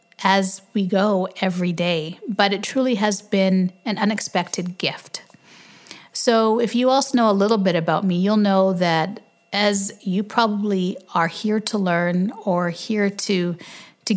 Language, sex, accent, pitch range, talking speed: English, female, American, 185-225 Hz, 155 wpm